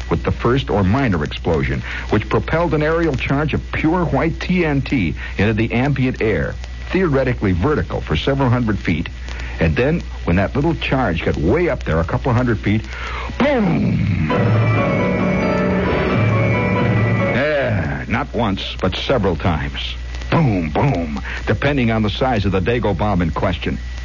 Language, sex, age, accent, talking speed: English, male, 60-79, American, 145 wpm